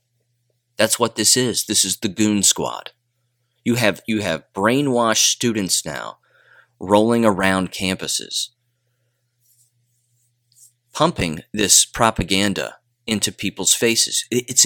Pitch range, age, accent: 95-120 Hz, 30-49, American